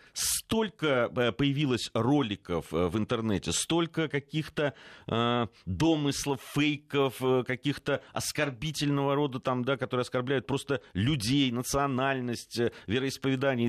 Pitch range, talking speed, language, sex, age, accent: 90-130 Hz, 80 wpm, Russian, male, 40-59, native